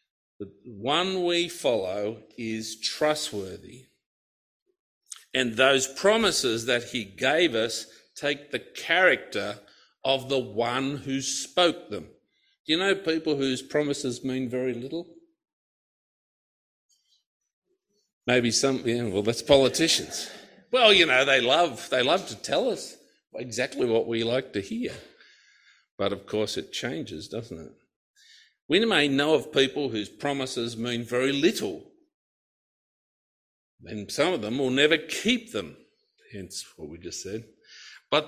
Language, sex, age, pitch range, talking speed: English, male, 50-69, 115-170 Hz, 130 wpm